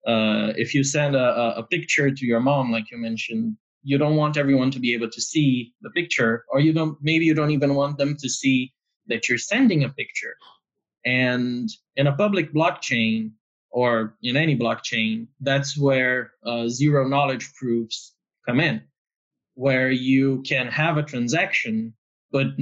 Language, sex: English, male